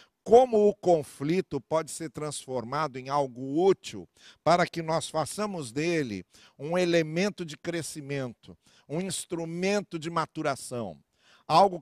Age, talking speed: 50-69, 115 wpm